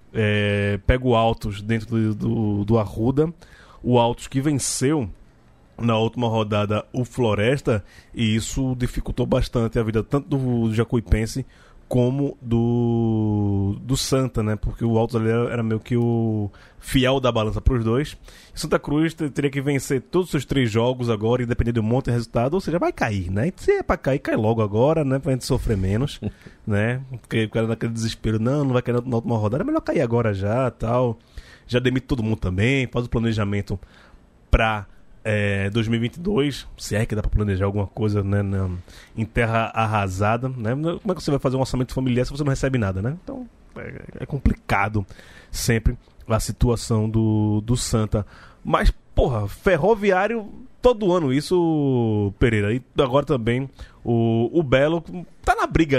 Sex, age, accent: male, 20-39, Brazilian